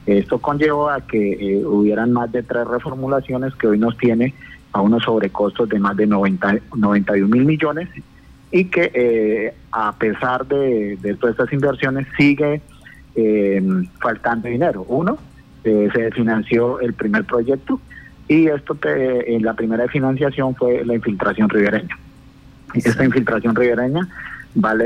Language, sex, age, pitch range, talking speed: Spanish, male, 30-49, 110-135 Hz, 145 wpm